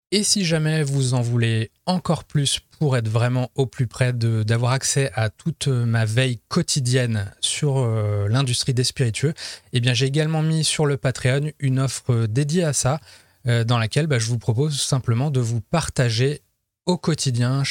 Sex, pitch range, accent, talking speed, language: male, 115-140 Hz, French, 180 wpm, French